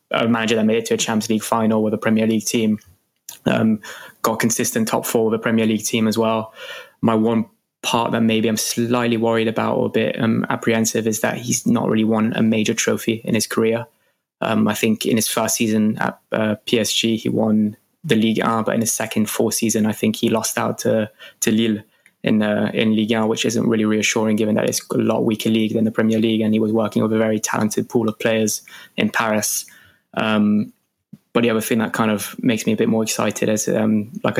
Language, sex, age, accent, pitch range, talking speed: English, male, 20-39, British, 110-115 Hz, 230 wpm